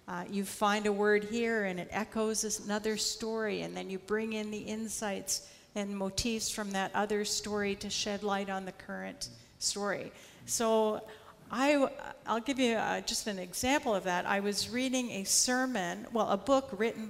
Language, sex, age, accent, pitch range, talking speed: English, female, 50-69, American, 200-230 Hz, 185 wpm